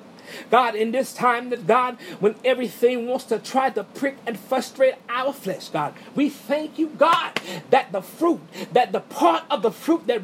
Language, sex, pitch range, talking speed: English, male, 215-255 Hz, 190 wpm